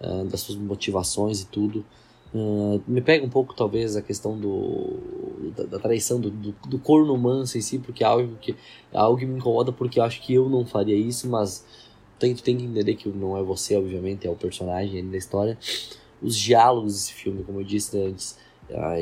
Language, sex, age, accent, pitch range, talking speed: Portuguese, male, 20-39, Brazilian, 105-130 Hz, 200 wpm